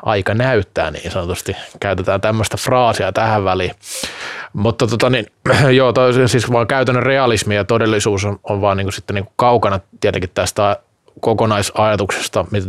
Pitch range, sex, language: 105-130 Hz, male, Finnish